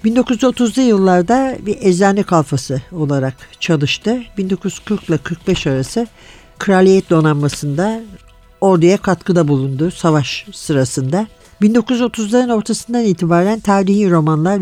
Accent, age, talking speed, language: native, 60-79, 95 wpm, Turkish